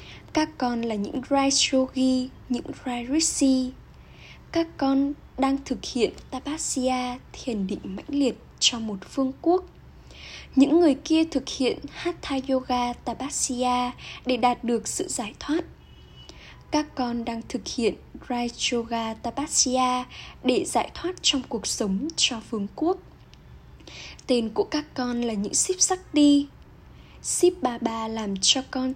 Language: Vietnamese